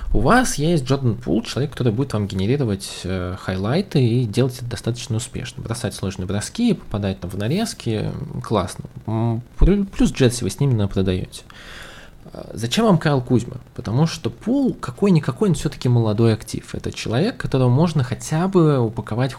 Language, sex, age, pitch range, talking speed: Russian, male, 20-39, 105-135 Hz, 155 wpm